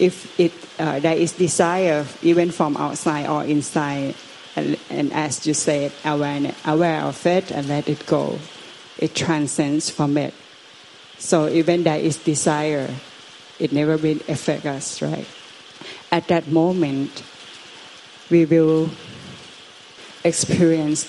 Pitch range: 150-170 Hz